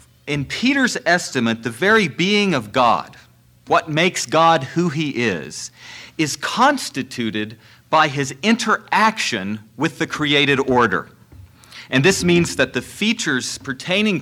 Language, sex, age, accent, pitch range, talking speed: English, male, 40-59, American, 120-170 Hz, 125 wpm